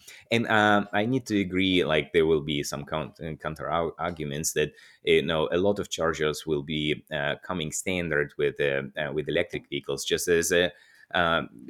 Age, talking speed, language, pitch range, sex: 30-49, 180 wpm, English, 75-110 Hz, male